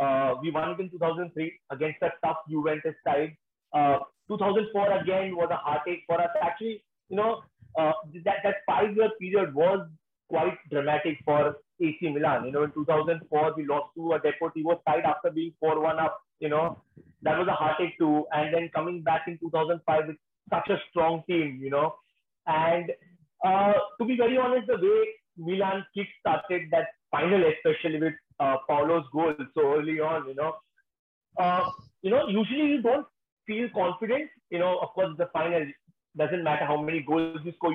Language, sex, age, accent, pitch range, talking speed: English, male, 30-49, Indian, 155-200 Hz, 175 wpm